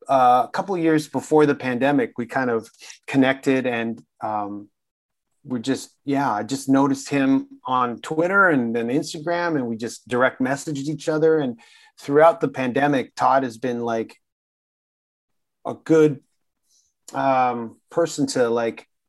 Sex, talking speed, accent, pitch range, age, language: male, 150 wpm, American, 120-145 Hz, 30-49, English